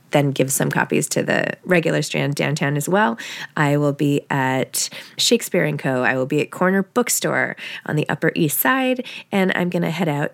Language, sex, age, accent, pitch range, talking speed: English, female, 20-39, American, 155-195 Hz, 195 wpm